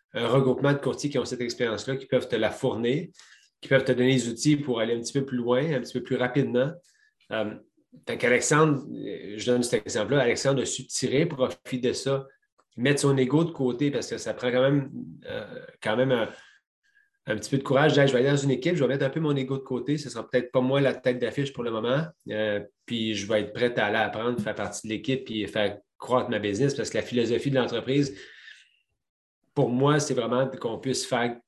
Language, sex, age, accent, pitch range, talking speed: French, male, 30-49, Canadian, 115-140 Hz, 235 wpm